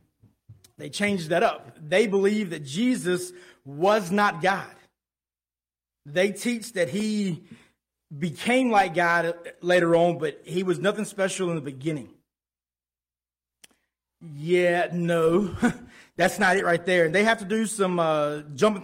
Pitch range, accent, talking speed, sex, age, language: 150-195 Hz, American, 135 wpm, male, 30-49, English